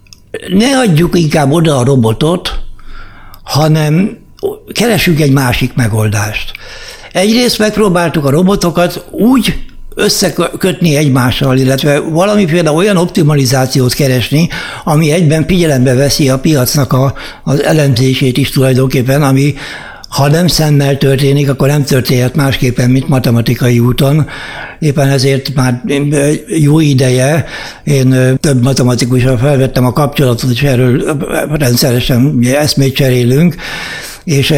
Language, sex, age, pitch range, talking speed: Hungarian, male, 60-79, 130-155 Hz, 110 wpm